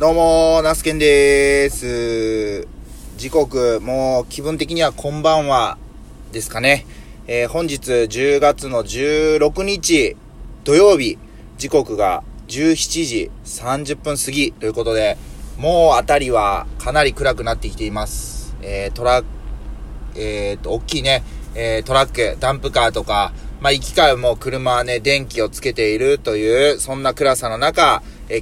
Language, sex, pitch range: Japanese, male, 115-150 Hz